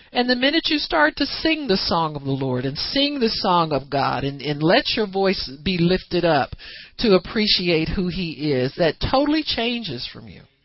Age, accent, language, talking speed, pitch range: 50-69, American, English, 205 wpm, 130-190 Hz